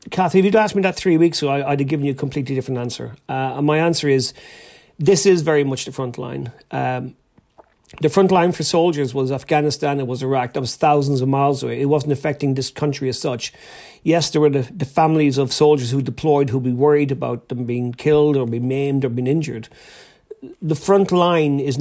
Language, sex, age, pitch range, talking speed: English, male, 40-59, 135-160 Hz, 220 wpm